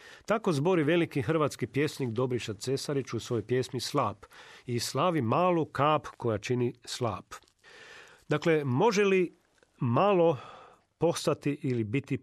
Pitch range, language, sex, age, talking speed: 130-175 Hz, Croatian, male, 40-59, 125 wpm